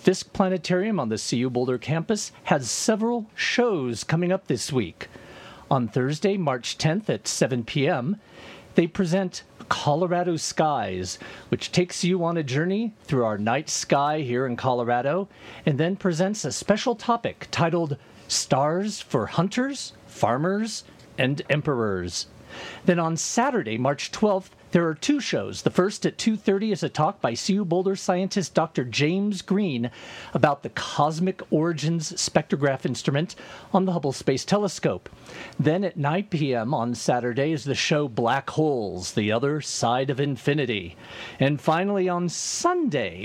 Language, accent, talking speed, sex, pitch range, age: English, American, 145 wpm, male, 140-195 Hz, 40-59